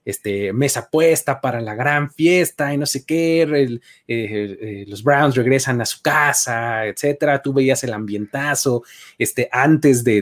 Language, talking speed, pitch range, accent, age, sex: Spanish, 170 wpm, 115-180 Hz, Mexican, 30-49, male